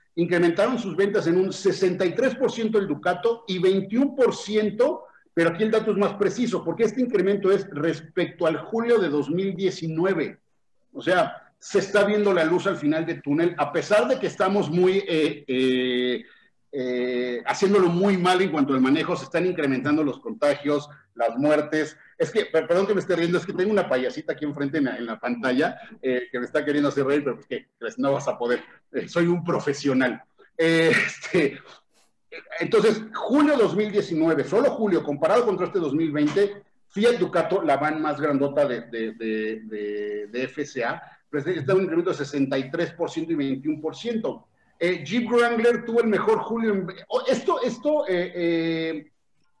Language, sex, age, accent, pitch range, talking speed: Spanish, male, 50-69, Mexican, 145-200 Hz, 170 wpm